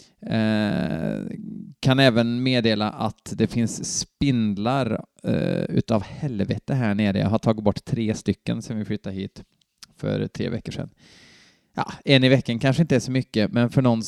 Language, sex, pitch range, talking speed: Swedish, male, 110-160 Hz, 170 wpm